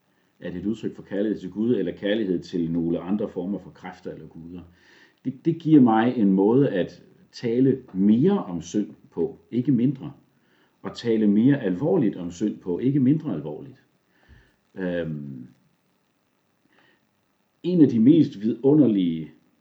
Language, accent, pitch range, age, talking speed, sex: Danish, native, 85-110 Hz, 50-69, 145 wpm, male